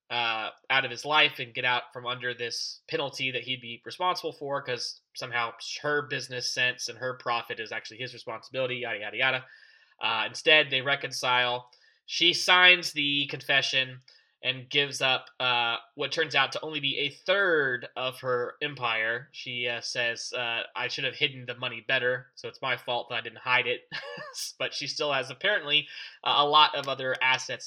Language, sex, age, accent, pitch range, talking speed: English, male, 20-39, American, 125-145 Hz, 185 wpm